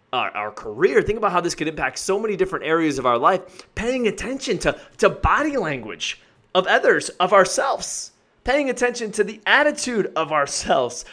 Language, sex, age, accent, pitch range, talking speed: English, male, 30-49, American, 140-200 Hz, 180 wpm